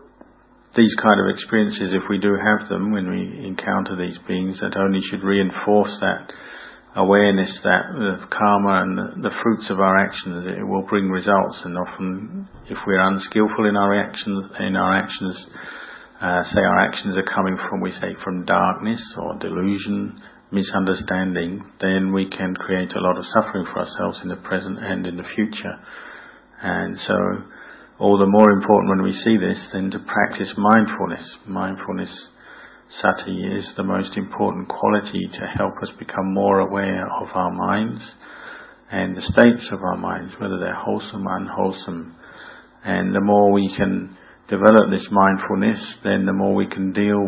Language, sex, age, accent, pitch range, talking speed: English, male, 40-59, British, 95-100 Hz, 170 wpm